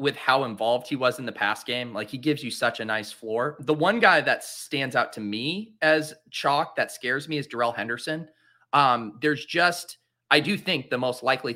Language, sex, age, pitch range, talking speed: English, male, 30-49, 115-155 Hz, 220 wpm